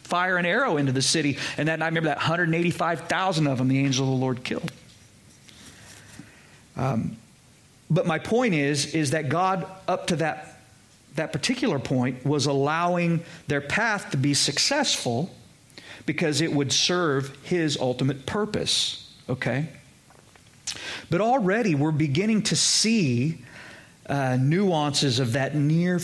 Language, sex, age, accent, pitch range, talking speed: English, male, 40-59, American, 145-190 Hz, 140 wpm